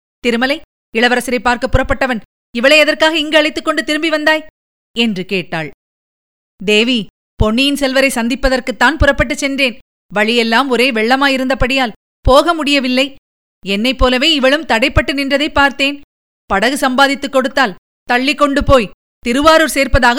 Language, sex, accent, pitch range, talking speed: Tamil, female, native, 245-295 Hz, 115 wpm